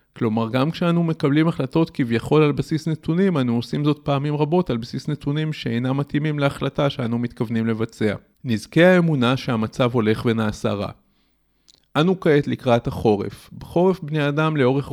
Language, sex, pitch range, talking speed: Hebrew, male, 120-150 Hz, 150 wpm